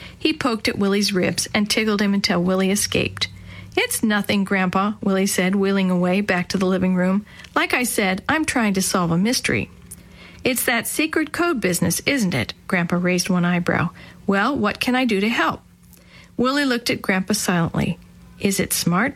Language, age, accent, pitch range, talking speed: English, 50-69, American, 190-245 Hz, 180 wpm